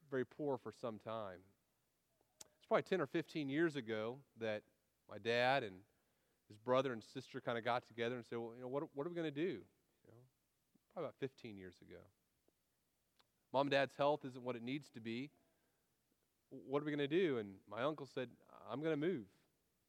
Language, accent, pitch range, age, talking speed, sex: English, American, 115-145 Hz, 30-49, 200 wpm, male